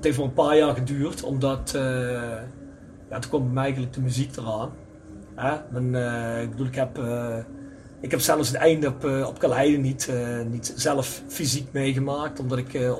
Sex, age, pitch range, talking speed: male, 40-59, 125-145 Hz, 200 wpm